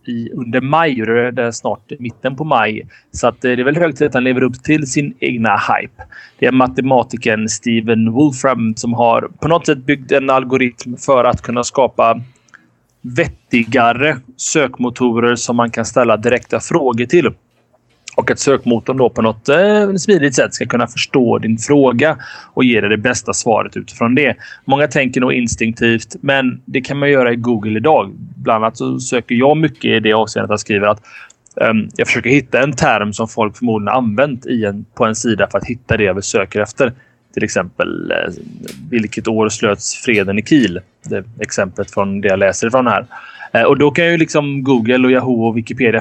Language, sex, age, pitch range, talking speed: Swedish, male, 30-49, 115-140 Hz, 195 wpm